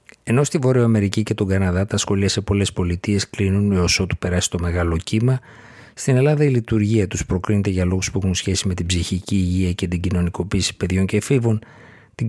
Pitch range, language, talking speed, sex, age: 90-110 Hz, Greek, 200 wpm, male, 50-69